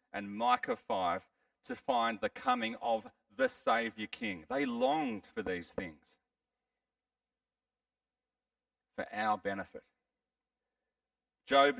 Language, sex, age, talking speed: English, male, 40-59, 100 wpm